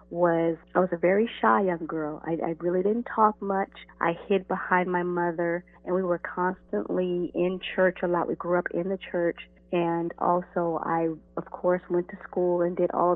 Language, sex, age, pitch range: English, female, 30-49, 170-185 Hz